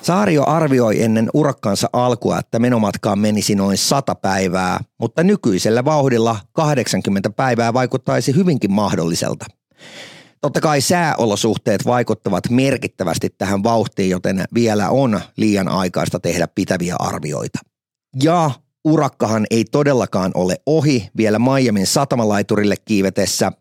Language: Finnish